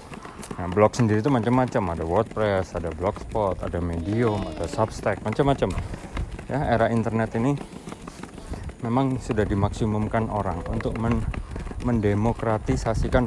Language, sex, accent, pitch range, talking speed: Indonesian, male, native, 95-115 Hz, 110 wpm